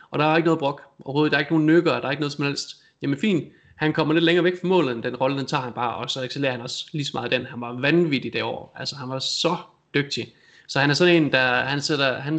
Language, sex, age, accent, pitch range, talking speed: Danish, male, 20-39, native, 125-155 Hz, 305 wpm